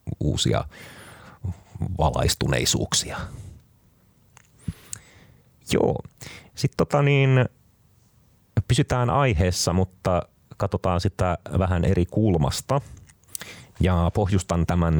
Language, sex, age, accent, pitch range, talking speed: Finnish, male, 30-49, native, 80-100 Hz, 70 wpm